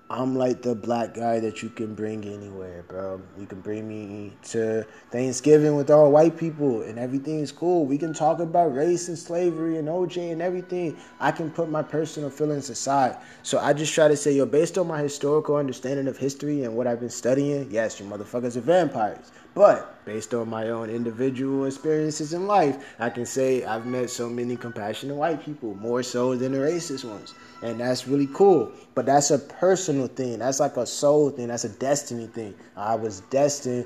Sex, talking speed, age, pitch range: male, 200 wpm, 20-39, 115-155 Hz